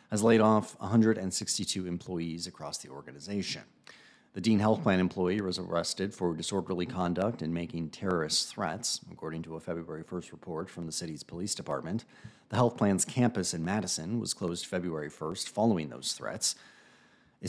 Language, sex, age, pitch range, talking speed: English, male, 40-59, 85-100 Hz, 160 wpm